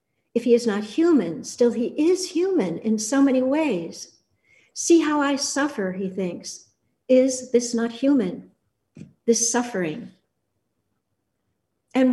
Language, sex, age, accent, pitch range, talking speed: English, female, 60-79, American, 200-245 Hz, 130 wpm